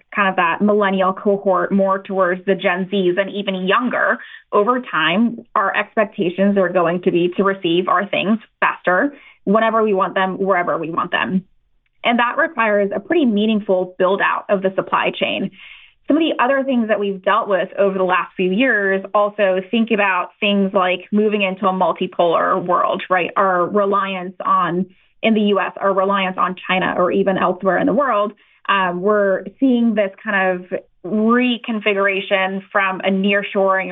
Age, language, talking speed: 20-39, English, 170 wpm